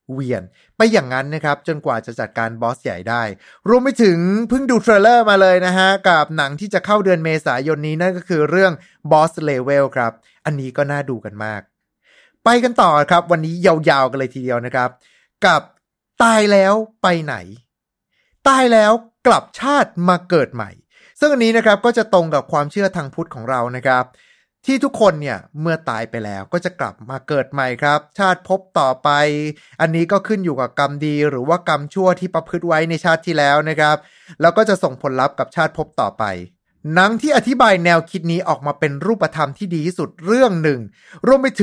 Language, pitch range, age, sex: Thai, 140-200 Hz, 20-39, male